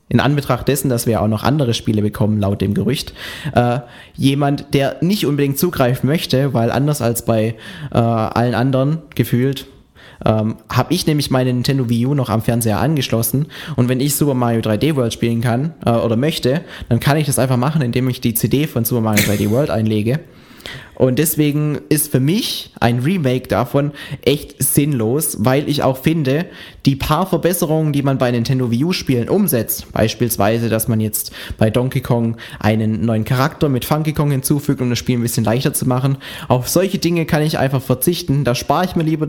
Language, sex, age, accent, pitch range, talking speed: German, male, 20-39, German, 120-150 Hz, 190 wpm